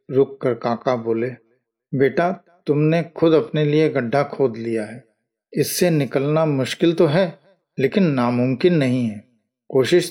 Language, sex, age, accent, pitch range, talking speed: Hindi, male, 50-69, native, 130-180 Hz, 135 wpm